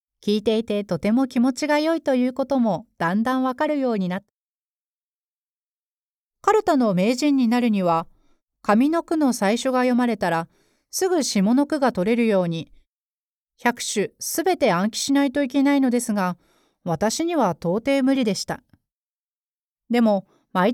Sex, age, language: female, 40-59, Japanese